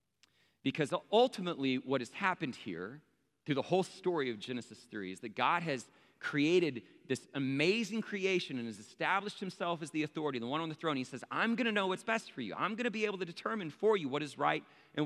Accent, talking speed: American, 225 wpm